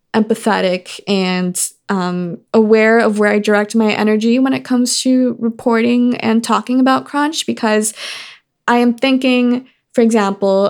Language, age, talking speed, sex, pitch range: English, 20-39, 140 wpm, female, 185-230 Hz